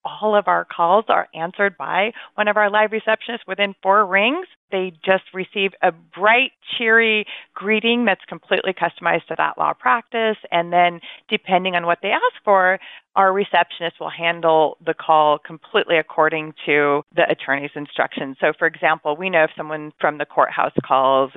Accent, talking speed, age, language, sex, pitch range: American, 170 wpm, 40-59, English, female, 170-215 Hz